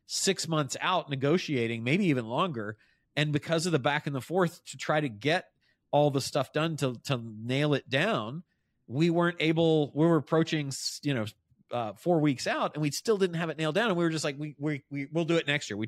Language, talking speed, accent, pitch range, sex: English, 240 wpm, American, 125-155 Hz, male